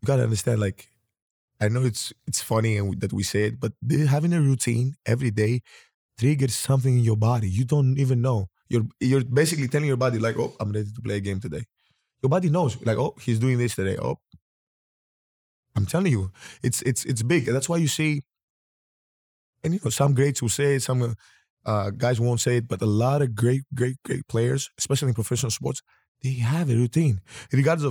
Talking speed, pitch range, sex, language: 210 wpm, 110-135 Hz, male, English